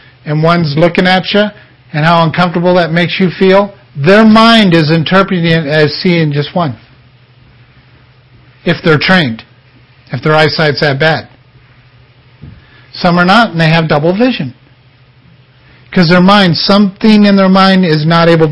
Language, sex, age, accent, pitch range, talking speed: English, male, 50-69, American, 125-180 Hz, 150 wpm